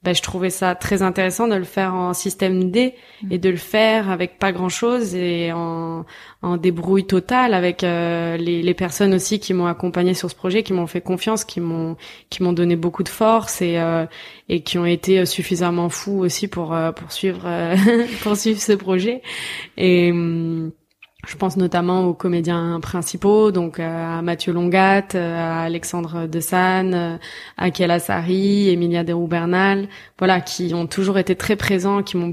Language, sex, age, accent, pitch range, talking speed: French, female, 20-39, French, 170-190 Hz, 175 wpm